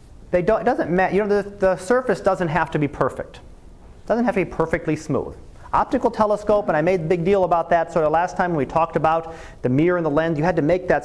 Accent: American